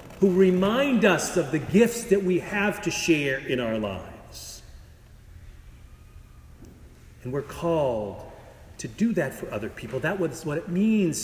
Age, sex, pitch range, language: 40-59, male, 125-175 Hz, English